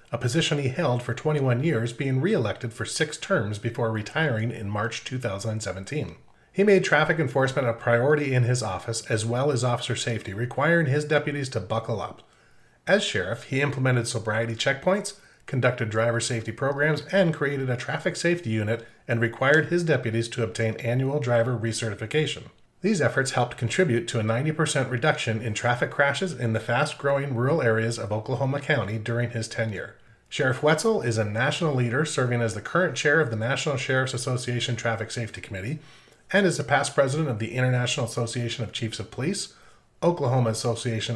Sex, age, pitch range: male, 30-49, 115-150 Hz